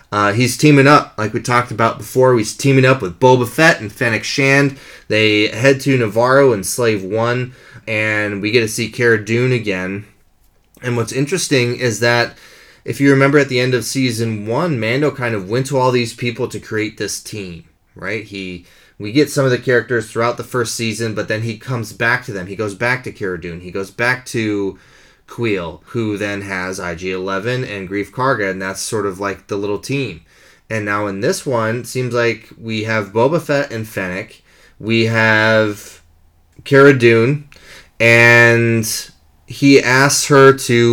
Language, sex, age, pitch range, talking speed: English, male, 20-39, 105-125 Hz, 190 wpm